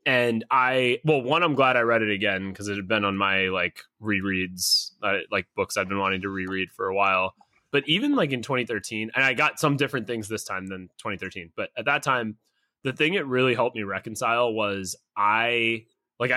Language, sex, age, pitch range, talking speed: English, male, 20-39, 105-140 Hz, 210 wpm